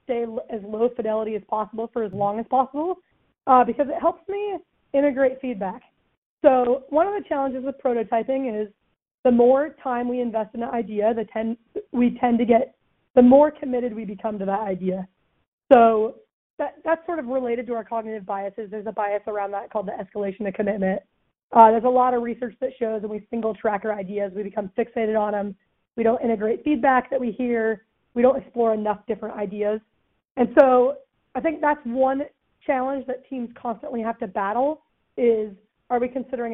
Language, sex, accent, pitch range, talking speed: English, female, American, 220-260 Hz, 190 wpm